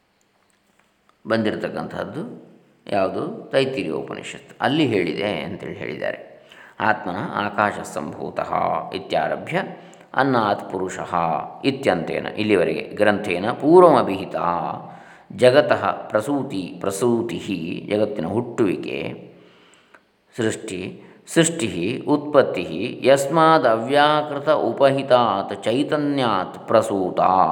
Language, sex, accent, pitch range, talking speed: Kannada, male, native, 100-135 Hz, 65 wpm